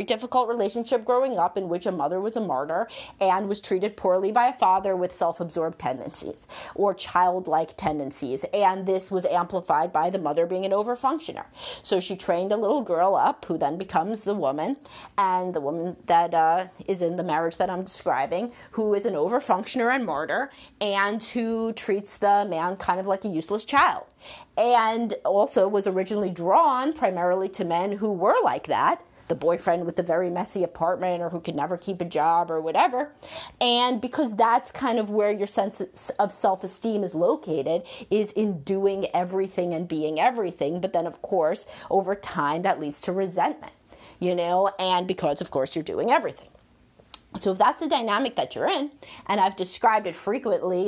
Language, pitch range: English, 175-220 Hz